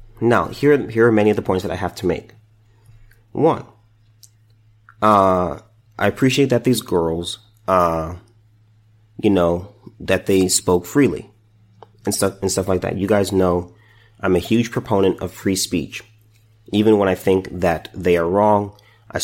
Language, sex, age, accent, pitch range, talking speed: English, male, 30-49, American, 95-110 Hz, 160 wpm